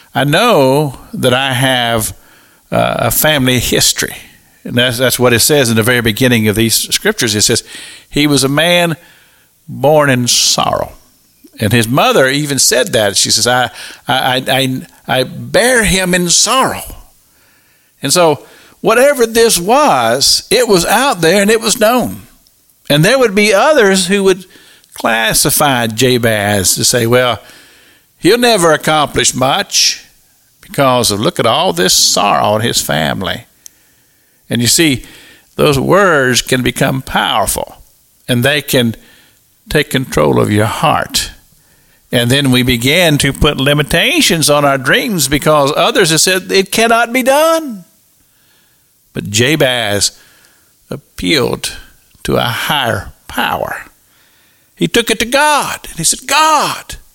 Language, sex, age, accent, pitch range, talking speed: English, male, 50-69, American, 125-185 Hz, 145 wpm